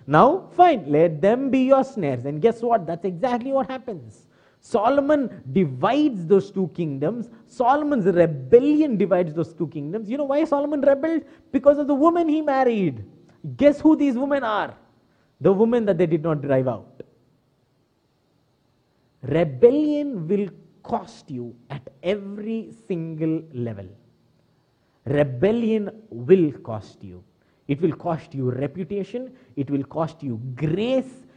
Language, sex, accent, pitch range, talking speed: English, male, Indian, 140-235 Hz, 135 wpm